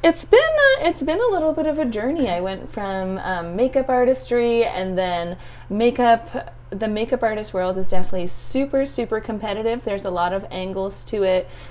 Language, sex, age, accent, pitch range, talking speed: English, female, 20-39, American, 180-250 Hz, 180 wpm